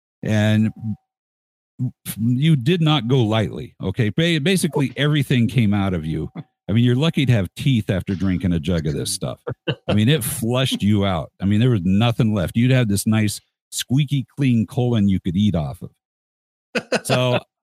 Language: English